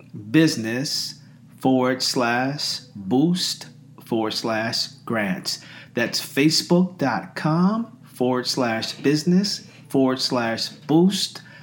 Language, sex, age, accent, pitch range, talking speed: English, male, 40-59, American, 130-165 Hz, 75 wpm